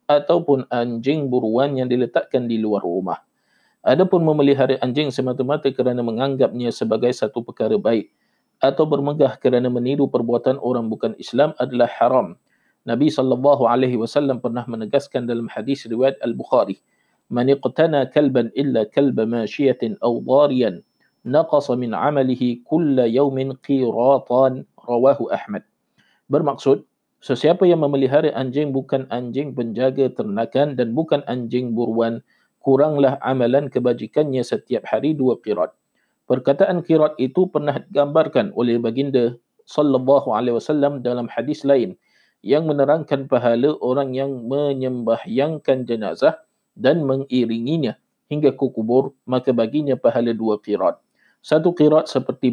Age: 50-69